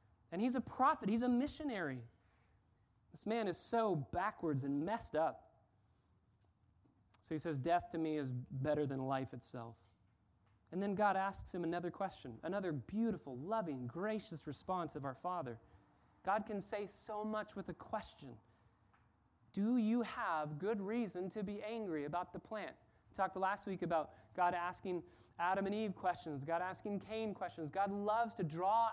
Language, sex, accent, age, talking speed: English, male, American, 30-49, 165 wpm